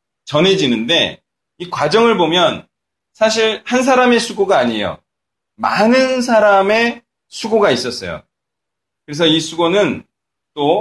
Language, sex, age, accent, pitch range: Korean, male, 30-49, native, 110-180 Hz